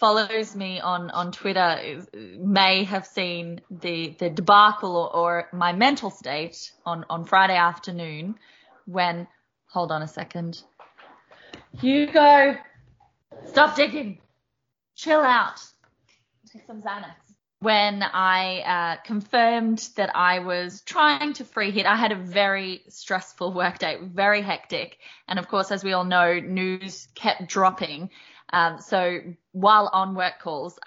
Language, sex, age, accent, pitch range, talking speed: English, female, 20-39, Australian, 175-215 Hz, 135 wpm